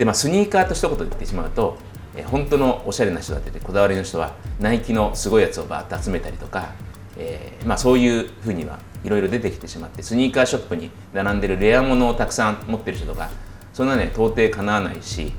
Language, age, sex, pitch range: Japanese, 30-49, male, 95-135 Hz